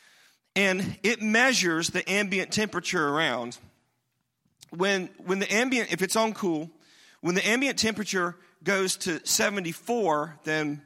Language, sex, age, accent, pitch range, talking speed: English, male, 40-59, American, 145-195 Hz, 125 wpm